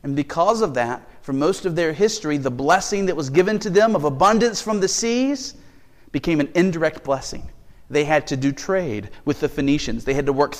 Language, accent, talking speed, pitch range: English, American, 210 wpm, 125-190 Hz